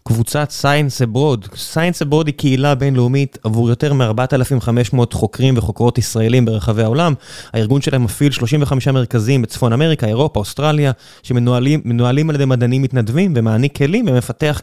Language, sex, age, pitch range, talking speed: Hebrew, male, 20-39, 115-145 Hz, 135 wpm